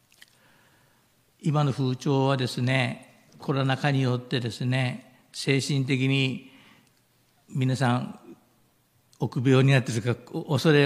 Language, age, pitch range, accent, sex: Japanese, 60-79, 120-140 Hz, native, male